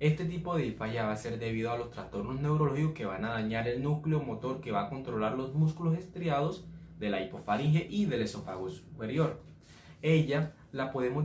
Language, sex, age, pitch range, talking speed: Spanish, male, 20-39, 110-155 Hz, 190 wpm